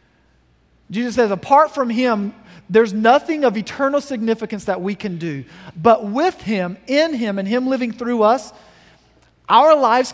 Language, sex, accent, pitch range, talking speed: English, male, American, 160-225 Hz, 155 wpm